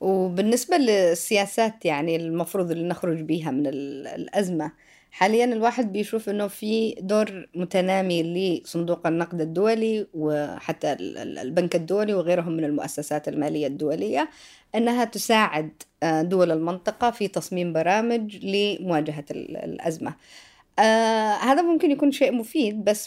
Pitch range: 170-235 Hz